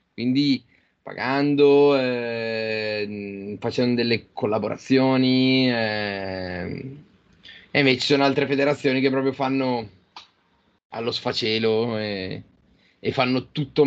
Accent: native